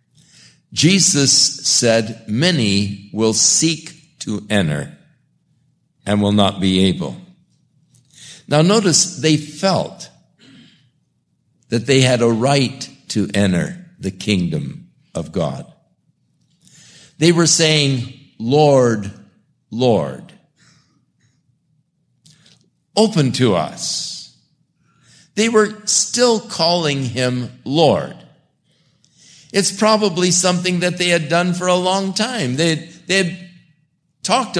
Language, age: English, 60-79